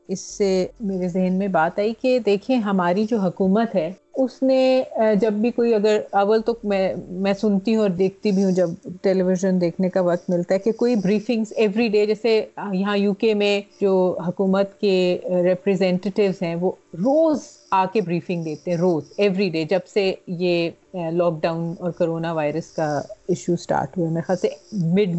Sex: female